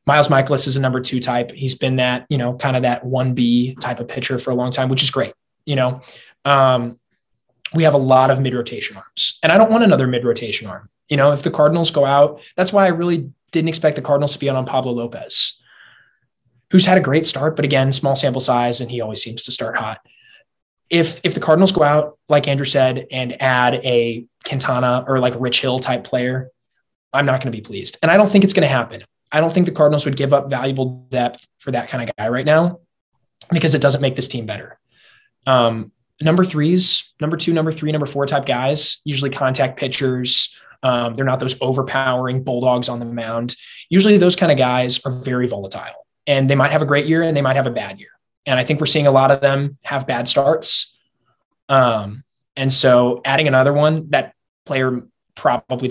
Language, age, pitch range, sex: English, 20-39, 125-150 Hz, male